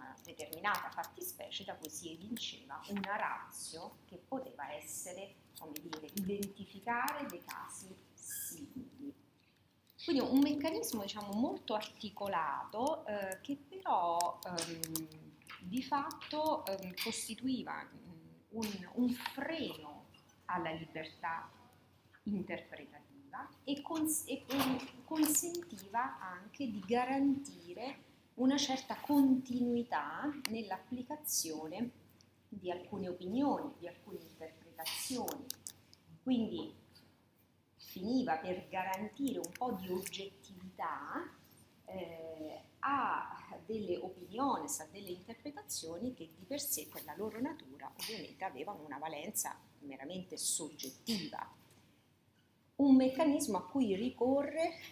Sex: female